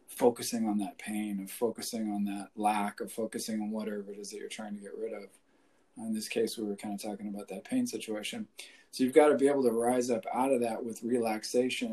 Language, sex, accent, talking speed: English, male, American, 240 wpm